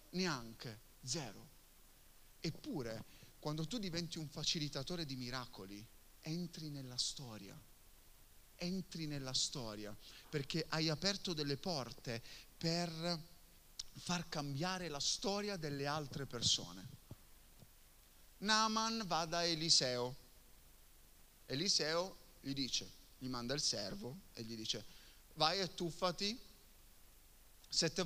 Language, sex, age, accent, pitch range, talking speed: Italian, male, 30-49, native, 120-165 Hz, 100 wpm